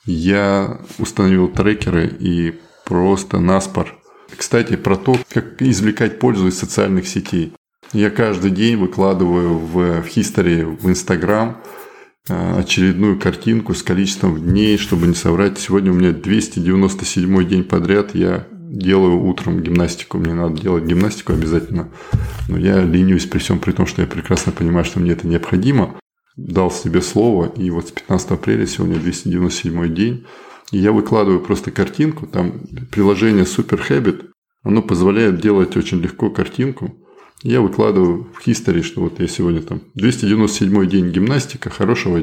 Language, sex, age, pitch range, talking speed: Russian, male, 20-39, 90-105 Hz, 140 wpm